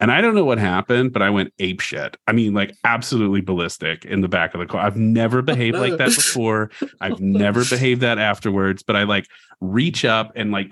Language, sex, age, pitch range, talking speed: English, male, 30-49, 100-155 Hz, 220 wpm